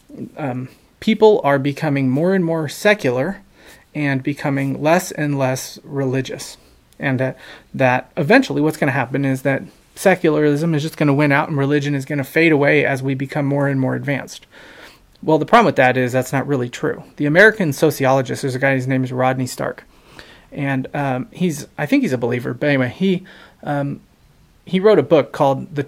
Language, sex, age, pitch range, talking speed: English, male, 30-49, 135-165 Hz, 195 wpm